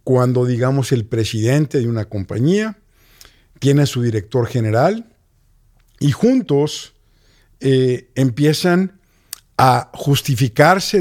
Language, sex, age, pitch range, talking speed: Spanish, male, 50-69, 115-160 Hz, 100 wpm